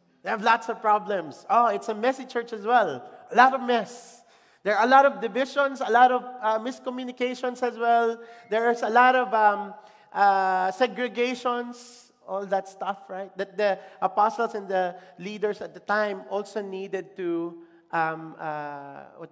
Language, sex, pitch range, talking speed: English, male, 170-230 Hz, 170 wpm